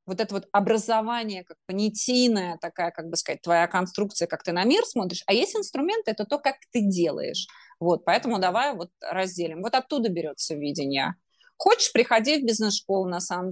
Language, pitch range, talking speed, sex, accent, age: Russian, 180-240 Hz, 180 wpm, female, native, 20-39